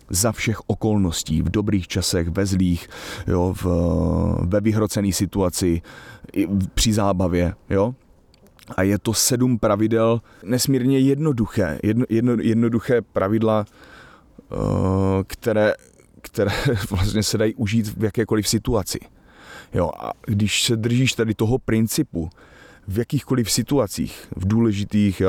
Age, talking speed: 30-49, 115 wpm